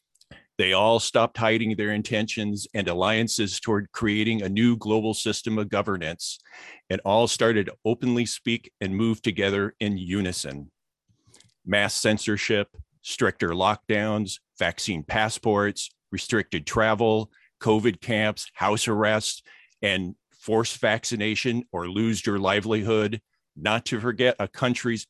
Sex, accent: male, American